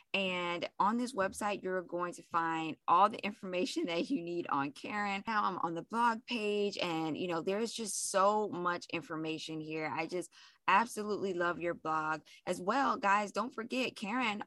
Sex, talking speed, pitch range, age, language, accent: female, 180 wpm, 160-200 Hz, 20-39, English, American